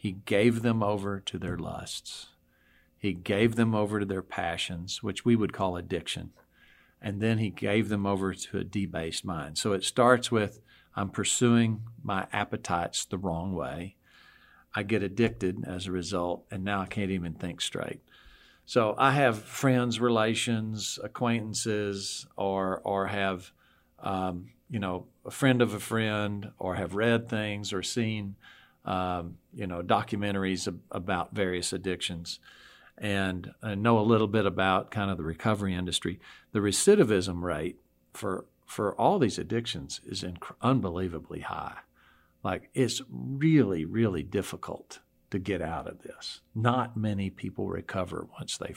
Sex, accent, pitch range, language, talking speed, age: male, American, 95-115 Hz, English, 150 wpm, 50-69